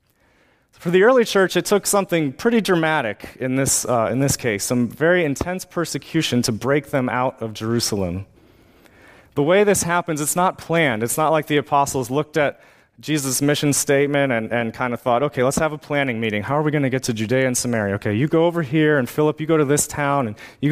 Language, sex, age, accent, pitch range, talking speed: English, male, 30-49, American, 120-155 Hz, 215 wpm